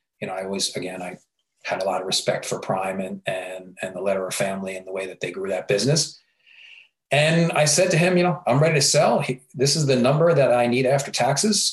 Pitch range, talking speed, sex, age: 110-150 Hz, 245 wpm, male, 40-59